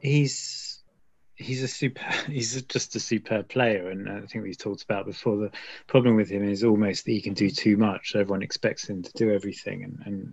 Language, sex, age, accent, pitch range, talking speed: English, male, 20-39, British, 95-115 Hz, 220 wpm